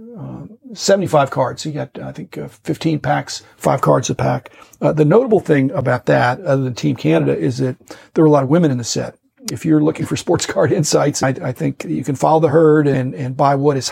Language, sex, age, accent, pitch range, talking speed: English, male, 50-69, American, 130-155 Hz, 235 wpm